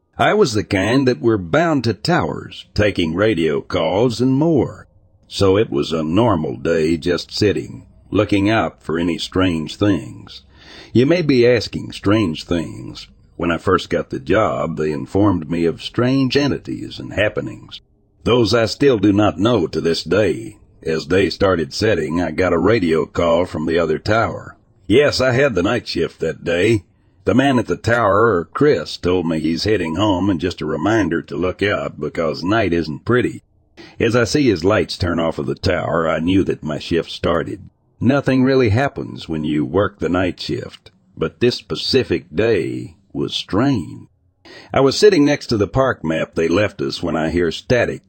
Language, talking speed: English, 180 wpm